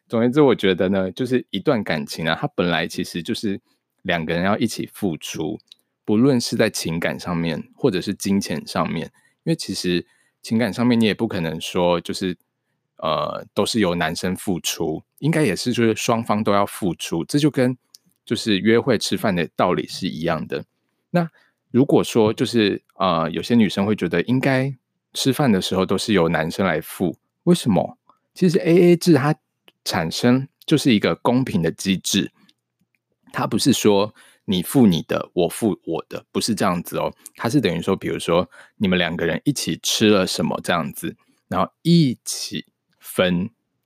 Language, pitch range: Chinese, 95-130 Hz